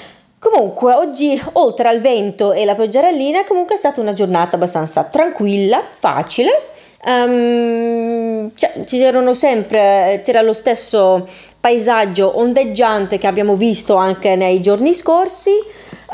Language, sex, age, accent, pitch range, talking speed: Italian, female, 30-49, native, 190-255 Hz, 105 wpm